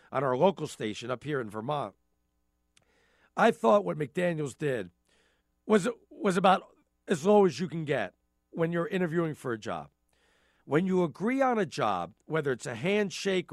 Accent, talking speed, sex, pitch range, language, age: American, 170 wpm, male, 130-210 Hz, English, 50-69